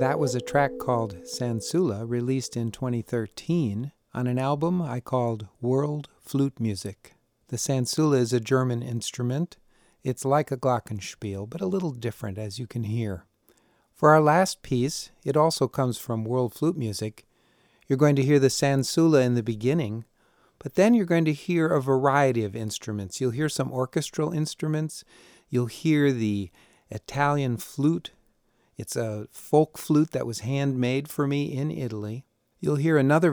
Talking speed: 160 wpm